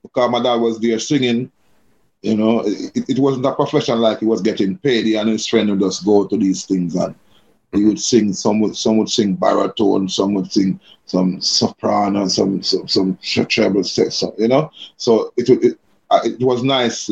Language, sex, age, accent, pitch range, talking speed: English, male, 30-49, Nigerian, 110-135 Hz, 195 wpm